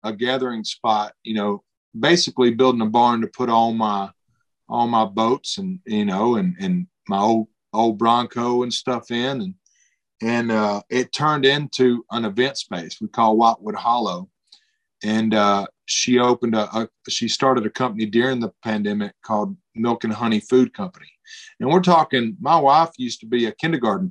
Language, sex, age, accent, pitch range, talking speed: English, male, 40-59, American, 115-160 Hz, 175 wpm